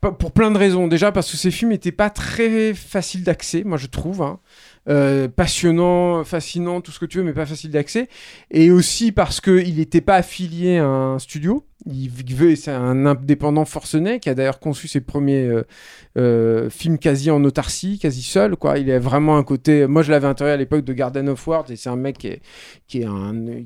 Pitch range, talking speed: 145-185 Hz, 220 wpm